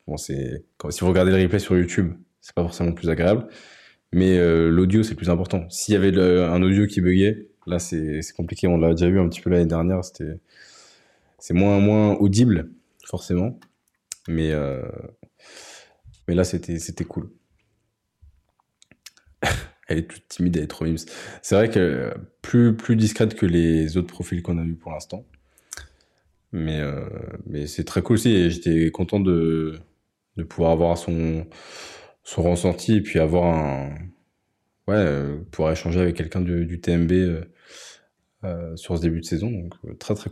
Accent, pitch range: French, 85-100 Hz